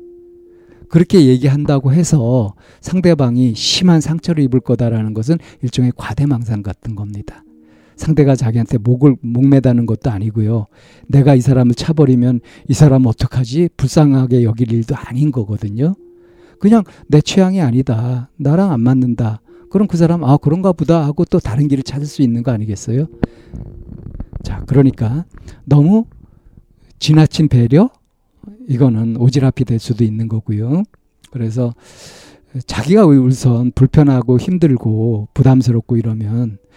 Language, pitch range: Korean, 115-150 Hz